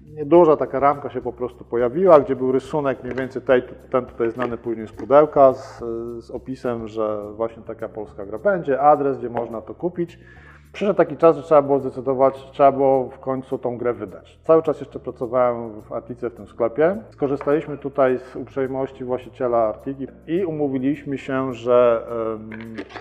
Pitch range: 115-140 Hz